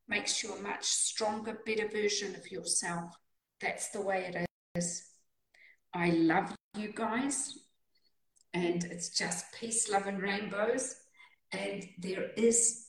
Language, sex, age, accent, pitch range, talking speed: English, female, 50-69, British, 185-240 Hz, 130 wpm